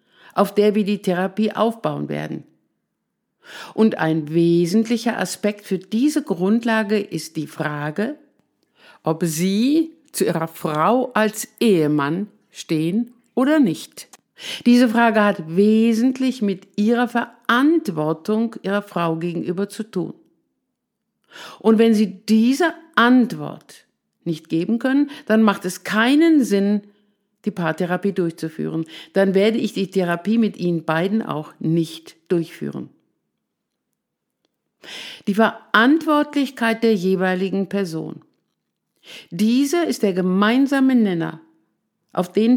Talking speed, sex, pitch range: 110 wpm, female, 175-230 Hz